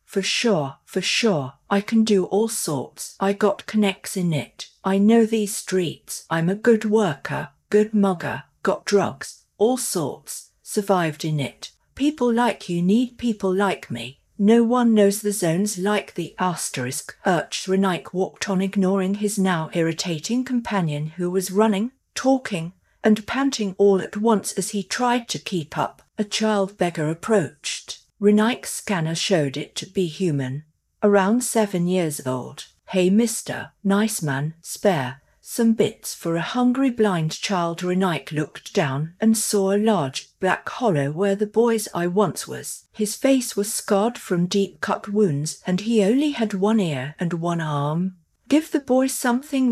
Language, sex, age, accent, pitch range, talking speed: English, female, 50-69, British, 170-220 Hz, 160 wpm